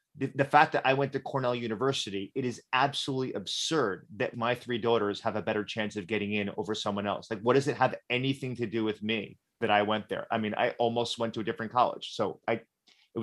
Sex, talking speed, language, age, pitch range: male, 235 wpm, English, 30-49, 110-150 Hz